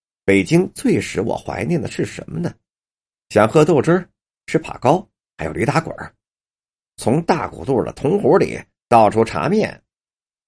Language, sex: Chinese, male